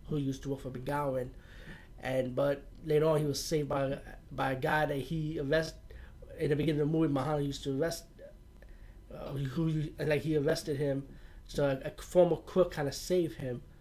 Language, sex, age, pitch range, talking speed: English, male, 20-39, 135-155 Hz, 190 wpm